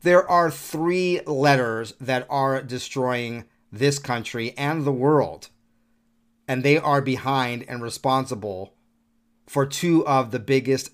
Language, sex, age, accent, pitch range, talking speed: English, male, 30-49, American, 115-160 Hz, 125 wpm